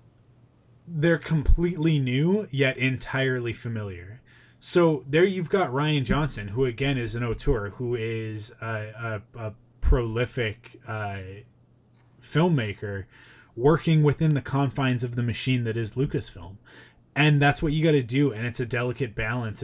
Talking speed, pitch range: 145 wpm, 115-140 Hz